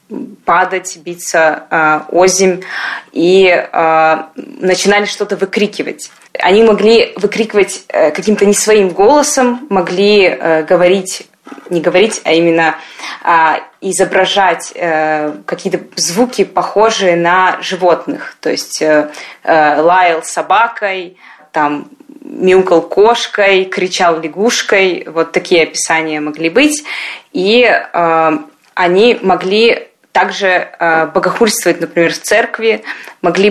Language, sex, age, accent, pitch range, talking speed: Russian, female, 20-39, native, 170-215 Hz, 100 wpm